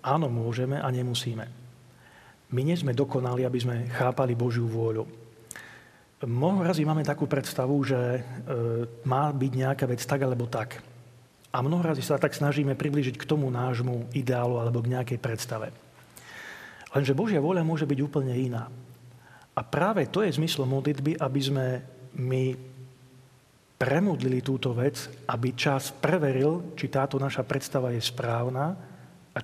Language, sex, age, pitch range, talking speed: Slovak, male, 40-59, 125-145 Hz, 140 wpm